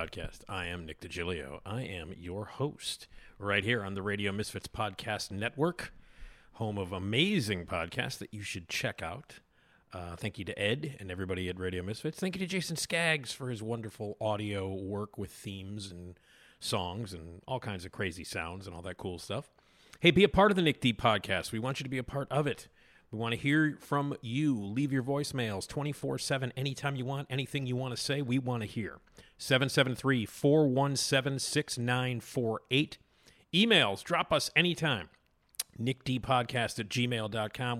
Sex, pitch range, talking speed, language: male, 100-145 Hz, 175 wpm, English